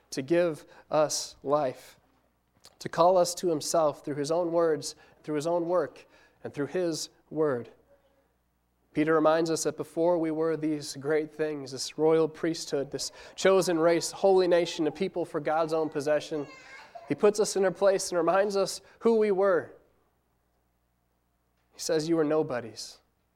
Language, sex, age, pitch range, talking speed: English, male, 30-49, 160-215 Hz, 160 wpm